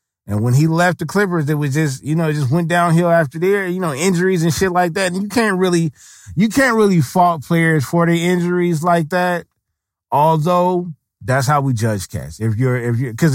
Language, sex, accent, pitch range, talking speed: English, male, American, 135-185 Hz, 220 wpm